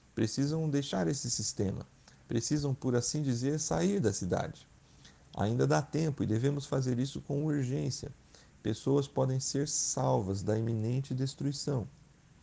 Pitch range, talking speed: 120-145 Hz, 130 wpm